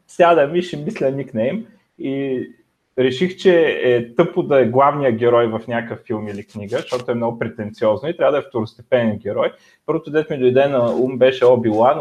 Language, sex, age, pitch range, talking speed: Bulgarian, male, 30-49, 115-145 Hz, 180 wpm